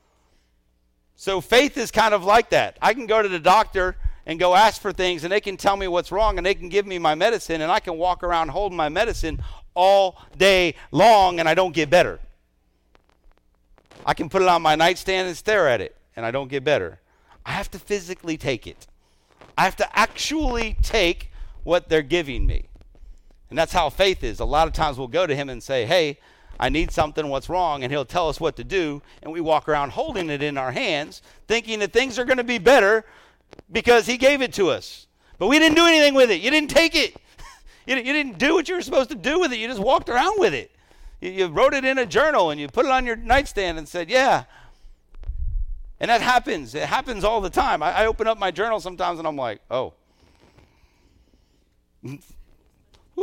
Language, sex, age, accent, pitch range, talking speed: English, male, 50-69, American, 155-240 Hz, 220 wpm